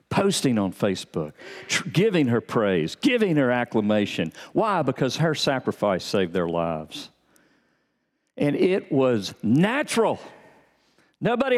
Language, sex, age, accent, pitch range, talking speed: English, male, 50-69, American, 135-225 Hz, 110 wpm